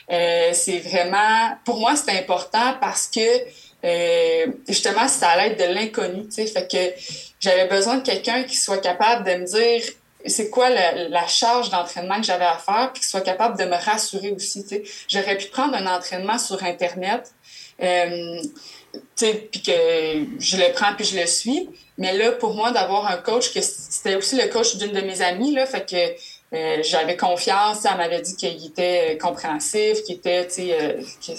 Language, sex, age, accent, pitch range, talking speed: French, female, 20-39, Canadian, 180-245 Hz, 195 wpm